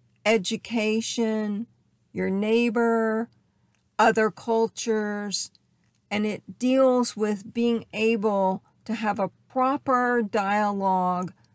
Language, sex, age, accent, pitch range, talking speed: English, female, 50-69, American, 165-220 Hz, 85 wpm